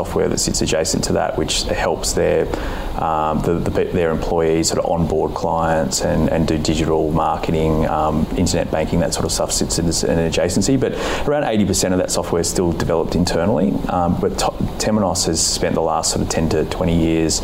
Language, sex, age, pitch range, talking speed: English, male, 30-49, 80-90 Hz, 185 wpm